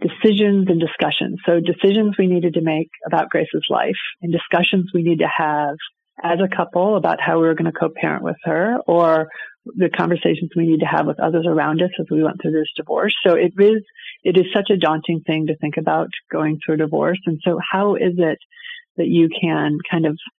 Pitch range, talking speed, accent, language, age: 155-185 Hz, 215 wpm, American, English, 30-49